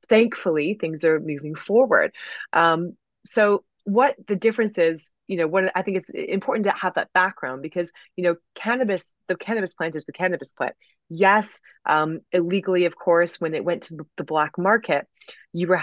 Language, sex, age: English, female, 20-39